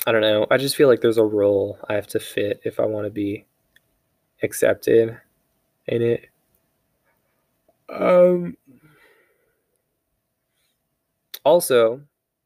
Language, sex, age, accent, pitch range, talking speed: English, male, 20-39, American, 105-125 Hz, 115 wpm